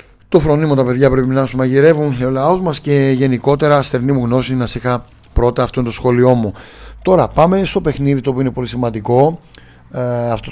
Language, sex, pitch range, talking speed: Greek, male, 120-145 Hz, 205 wpm